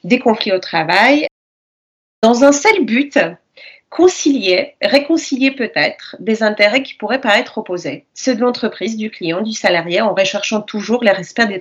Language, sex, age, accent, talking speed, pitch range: French, female, 30-49, French, 155 wpm, 190-255 Hz